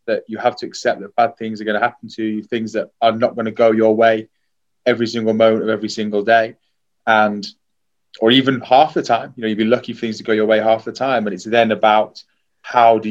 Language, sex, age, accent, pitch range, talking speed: English, male, 20-39, British, 110-125 Hz, 255 wpm